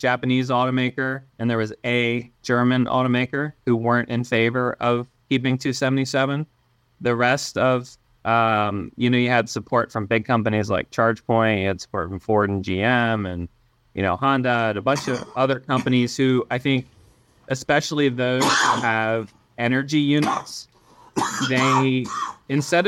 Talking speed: 150 wpm